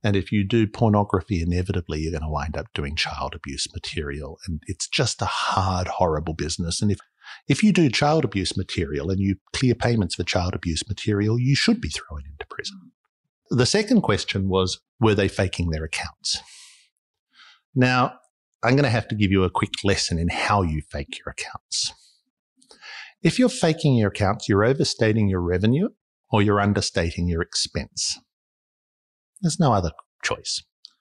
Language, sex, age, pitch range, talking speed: English, male, 50-69, 90-140 Hz, 170 wpm